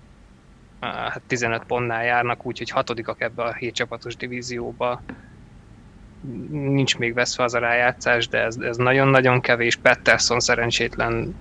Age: 20-39